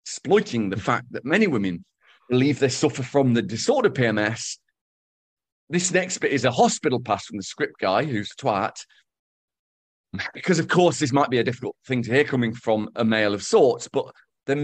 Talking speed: 190 wpm